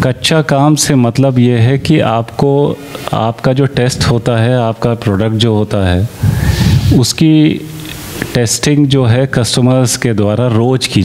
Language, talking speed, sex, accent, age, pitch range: Hindi, 145 wpm, male, native, 30-49, 110-135 Hz